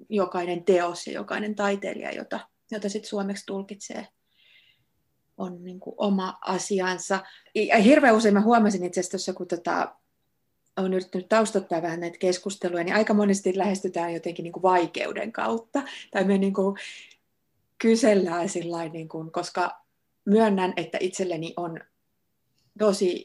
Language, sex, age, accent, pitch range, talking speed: Finnish, female, 30-49, native, 170-205 Hz, 120 wpm